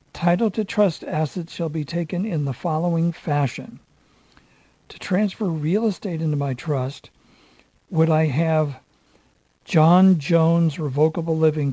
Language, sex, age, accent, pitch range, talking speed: English, male, 60-79, American, 145-175 Hz, 130 wpm